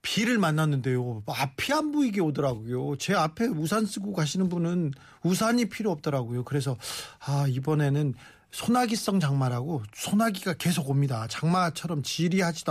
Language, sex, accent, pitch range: Korean, male, native, 140-200 Hz